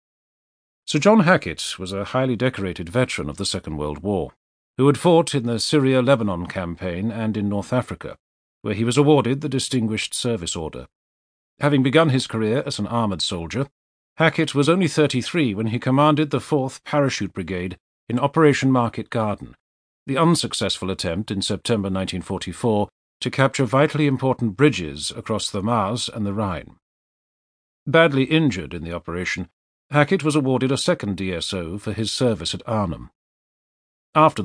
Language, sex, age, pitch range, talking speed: English, male, 40-59, 95-140 Hz, 155 wpm